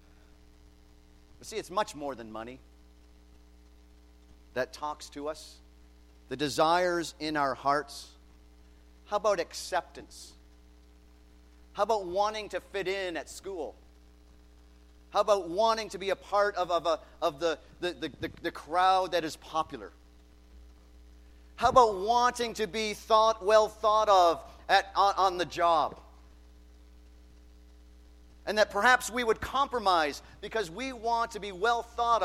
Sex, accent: male, American